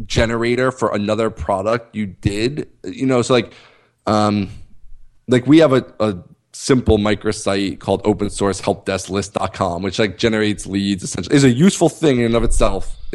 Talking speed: 165 wpm